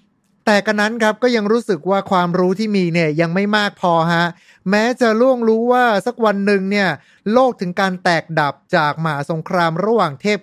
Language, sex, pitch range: Thai, male, 160-205 Hz